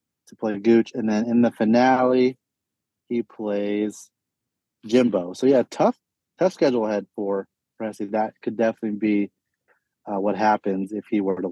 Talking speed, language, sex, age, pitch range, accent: 155 wpm, English, male, 30-49, 105-130 Hz, American